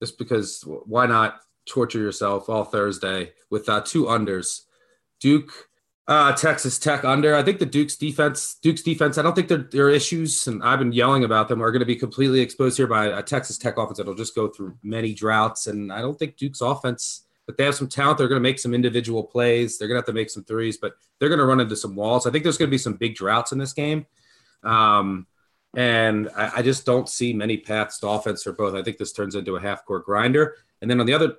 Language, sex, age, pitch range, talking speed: English, male, 30-49, 105-135 Hz, 240 wpm